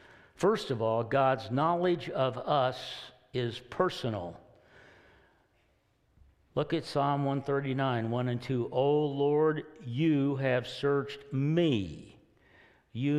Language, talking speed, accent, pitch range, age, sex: English, 105 wpm, American, 120-150 Hz, 60-79, male